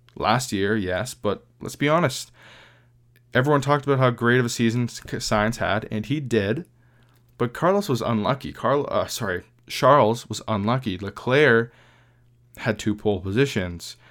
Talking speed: 150 wpm